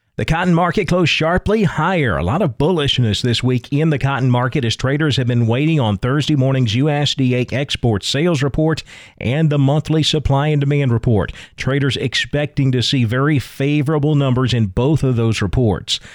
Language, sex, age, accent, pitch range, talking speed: English, male, 40-59, American, 115-140 Hz, 175 wpm